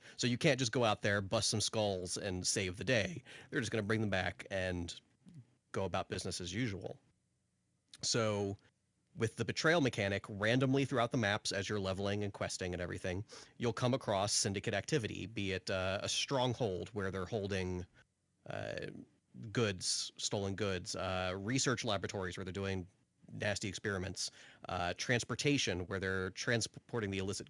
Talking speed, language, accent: 165 wpm, English, American